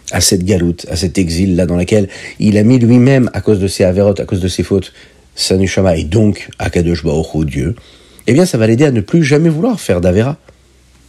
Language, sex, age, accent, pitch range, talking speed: French, male, 50-69, French, 90-135 Hz, 220 wpm